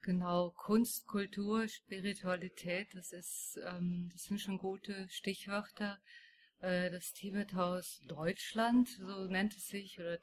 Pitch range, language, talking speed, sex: 180-210 Hz, German, 125 wpm, female